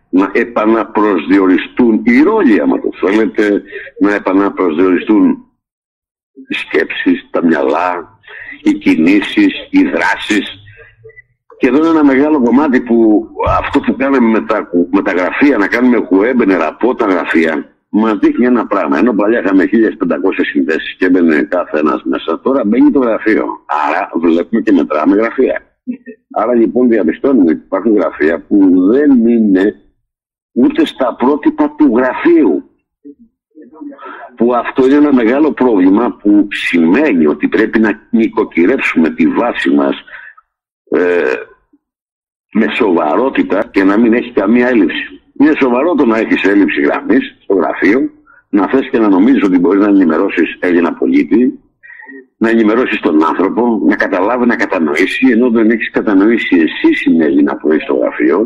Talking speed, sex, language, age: 140 wpm, male, Greek, 60-79